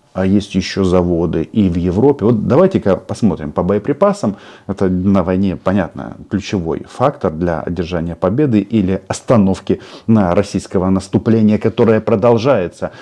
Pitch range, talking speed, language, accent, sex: 95-120 Hz, 130 wpm, Russian, native, male